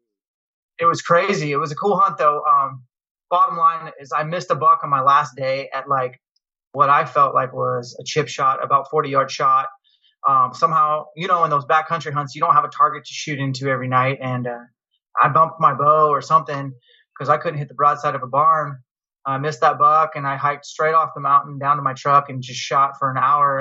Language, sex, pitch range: English, male, 135-160 Hz